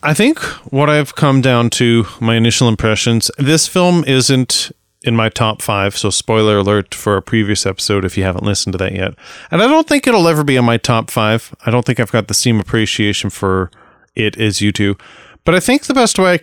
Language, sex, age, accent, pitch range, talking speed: English, male, 30-49, American, 105-145 Hz, 225 wpm